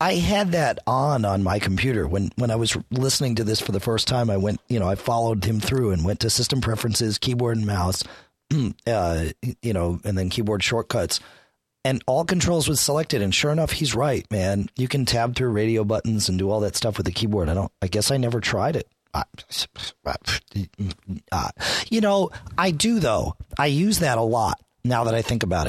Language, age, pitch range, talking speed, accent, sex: English, 40-59, 100-130 Hz, 210 wpm, American, male